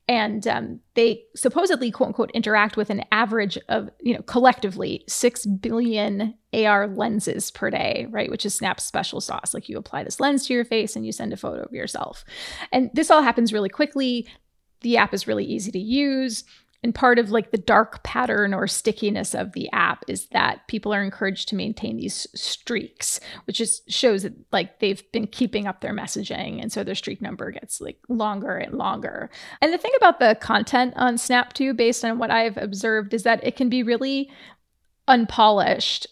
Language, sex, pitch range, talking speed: English, female, 210-250 Hz, 195 wpm